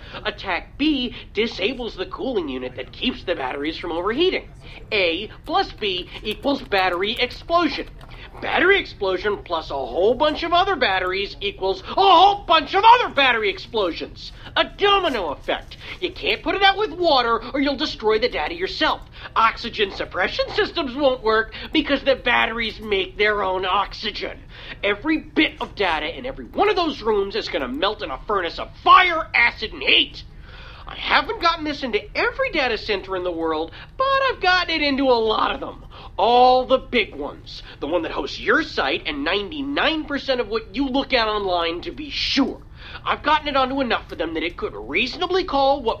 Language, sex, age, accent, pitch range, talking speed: English, male, 40-59, American, 220-340 Hz, 180 wpm